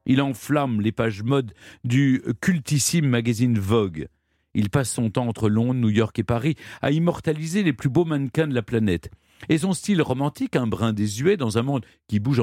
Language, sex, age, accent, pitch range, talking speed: French, male, 50-69, French, 110-160 Hz, 195 wpm